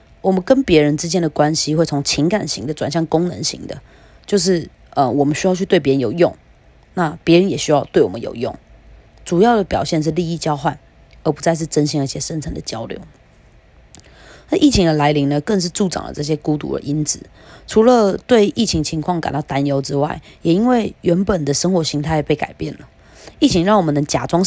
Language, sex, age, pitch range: Chinese, female, 20-39, 145-180 Hz